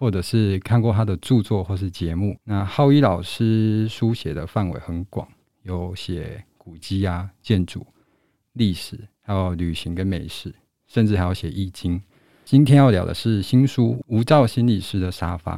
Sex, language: male, Chinese